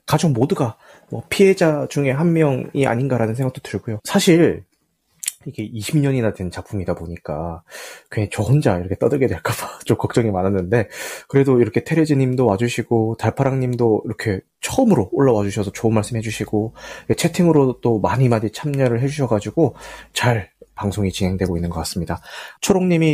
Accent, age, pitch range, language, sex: native, 30-49, 105-140 Hz, Korean, male